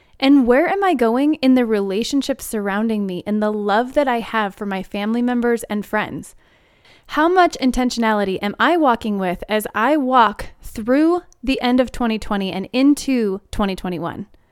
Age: 20-39